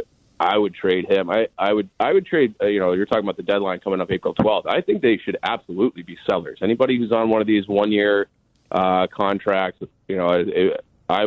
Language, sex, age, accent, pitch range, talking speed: English, male, 30-49, American, 90-110 Hz, 225 wpm